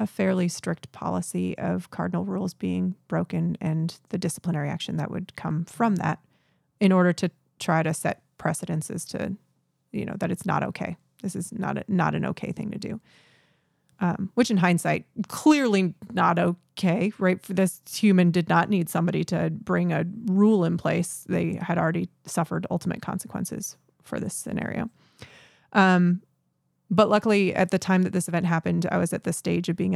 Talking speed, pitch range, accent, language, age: 175 wpm, 160-190 Hz, American, English, 30-49